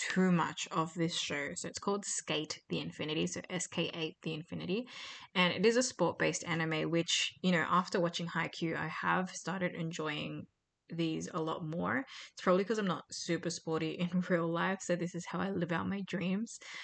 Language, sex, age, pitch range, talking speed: English, female, 20-39, 165-185 Hz, 190 wpm